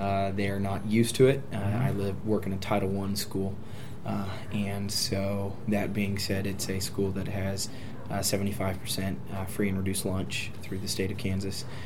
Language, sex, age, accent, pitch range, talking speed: English, male, 20-39, American, 95-110 Hz, 195 wpm